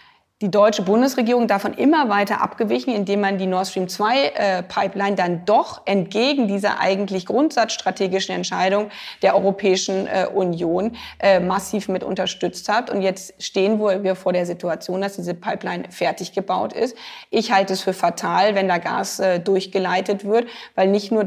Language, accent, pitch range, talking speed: English, German, 185-205 Hz, 150 wpm